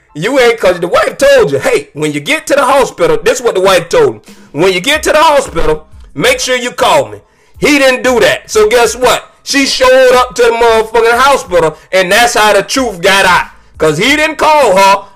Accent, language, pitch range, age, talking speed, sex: American, English, 180-305 Hz, 40-59, 230 wpm, male